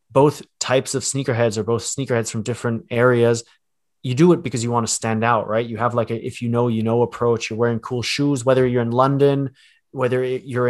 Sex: male